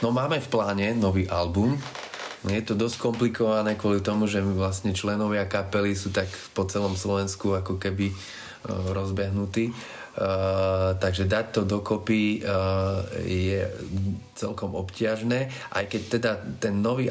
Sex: male